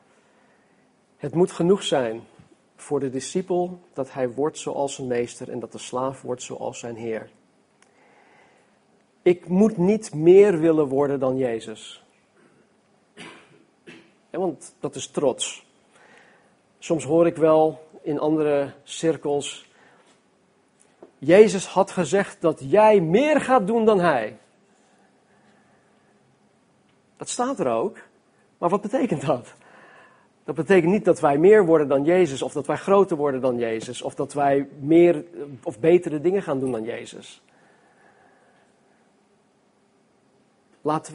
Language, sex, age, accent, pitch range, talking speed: Dutch, male, 40-59, Dutch, 130-175 Hz, 125 wpm